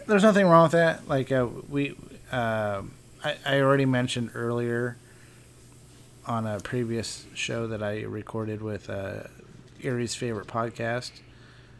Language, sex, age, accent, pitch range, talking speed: English, male, 30-49, American, 110-130 Hz, 130 wpm